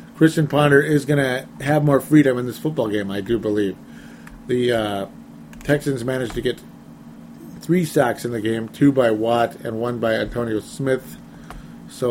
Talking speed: 175 wpm